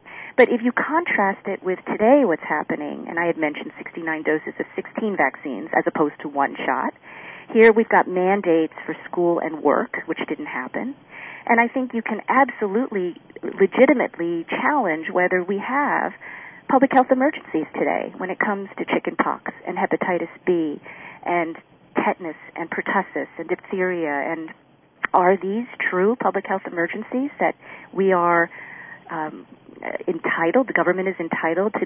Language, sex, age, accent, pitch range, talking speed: English, female, 40-59, American, 180-235 Hz, 150 wpm